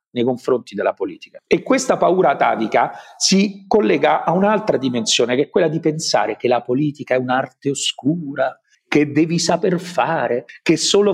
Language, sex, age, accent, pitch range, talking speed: Italian, male, 50-69, native, 155-205 Hz, 160 wpm